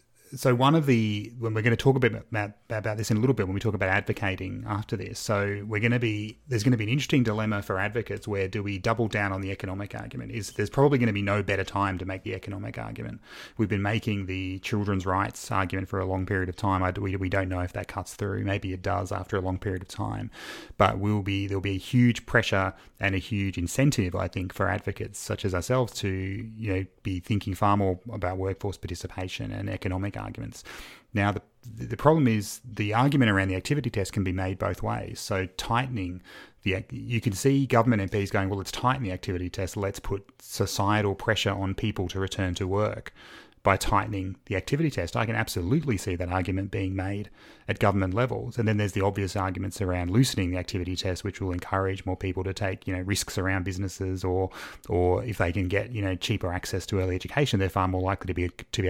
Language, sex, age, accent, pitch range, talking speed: English, male, 30-49, Australian, 95-115 Hz, 230 wpm